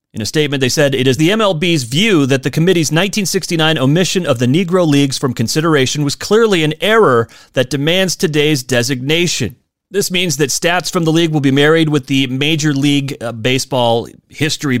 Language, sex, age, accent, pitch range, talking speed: English, male, 30-49, American, 135-195 Hz, 180 wpm